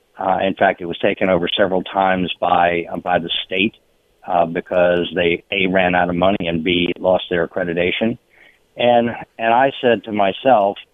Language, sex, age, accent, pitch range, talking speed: English, male, 50-69, American, 90-110 Hz, 180 wpm